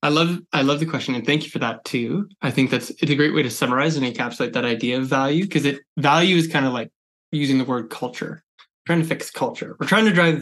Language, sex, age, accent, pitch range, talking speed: English, male, 20-39, American, 125-155 Hz, 260 wpm